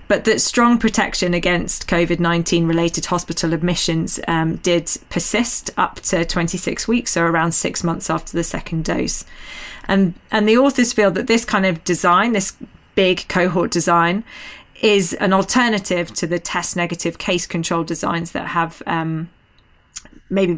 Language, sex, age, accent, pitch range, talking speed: English, female, 20-39, British, 170-205 Hz, 155 wpm